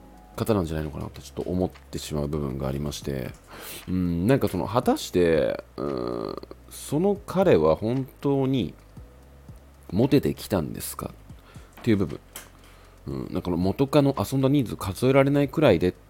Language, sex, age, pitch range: Japanese, male, 30-49, 80-125 Hz